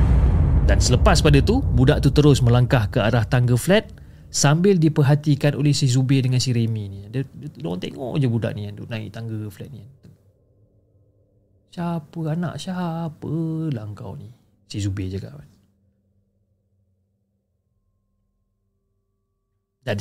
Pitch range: 100-150 Hz